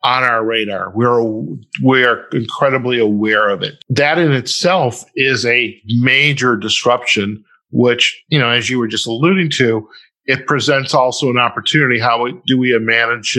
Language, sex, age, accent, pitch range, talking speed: English, male, 50-69, American, 110-130 Hz, 160 wpm